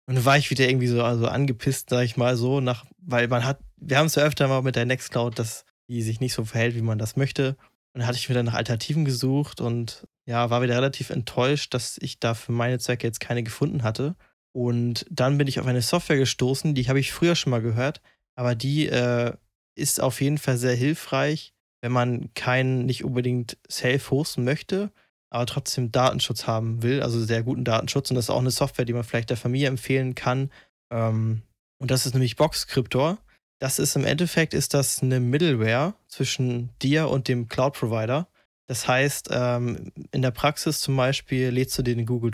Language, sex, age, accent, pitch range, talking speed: German, male, 20-39, German, 120-140 Hz, 200 wpm